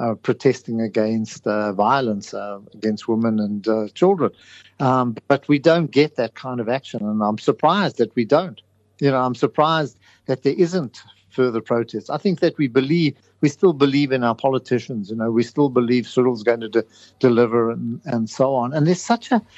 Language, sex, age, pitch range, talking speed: English, male, 50-69, 115-150 Hz, 195 wpm